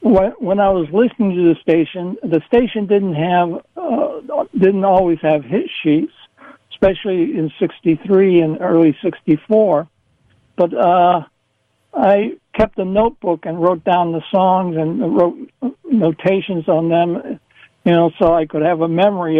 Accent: American